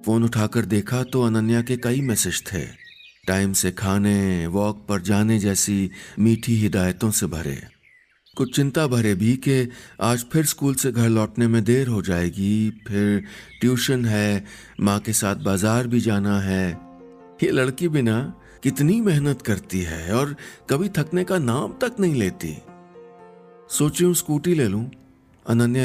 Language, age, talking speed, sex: Hindi, 50-69, 150 wpm, male